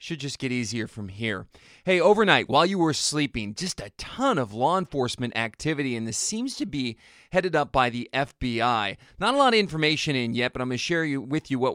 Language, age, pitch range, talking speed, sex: English, 30-49, 120-155 Hz, 225 wpm, male